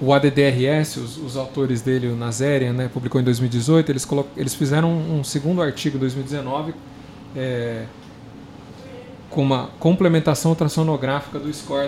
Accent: Brazilian